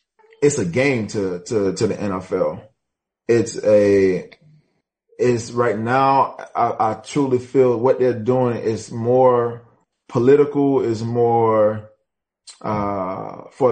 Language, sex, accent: English, male, American